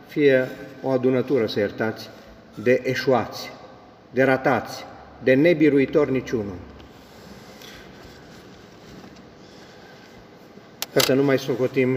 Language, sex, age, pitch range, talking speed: Romanian, male, 50-69, 120-150 Hz, 85 wpm